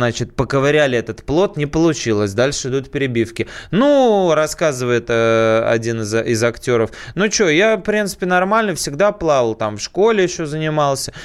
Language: Russian